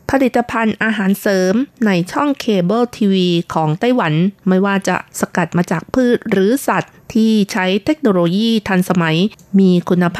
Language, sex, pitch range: Thai, female, 165-210 Hz